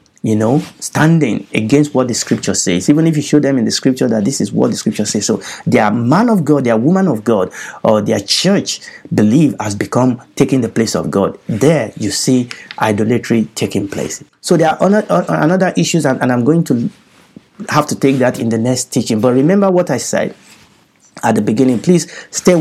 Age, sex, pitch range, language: 50-69, male, 120-155 Hz, English